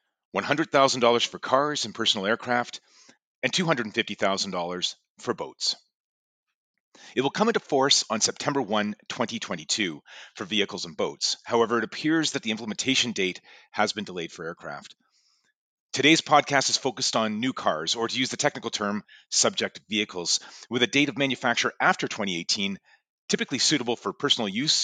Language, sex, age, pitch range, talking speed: English, male, 40-59, 100-135 Hz, 145 wpm